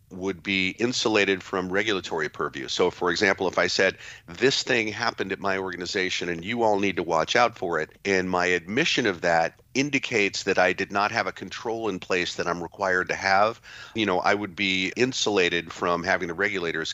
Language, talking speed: English, 200 wpm